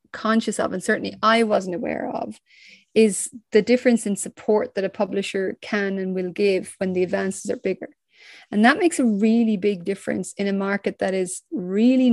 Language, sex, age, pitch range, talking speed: English, female, 30-49, 195-245 Hz, 190 wpm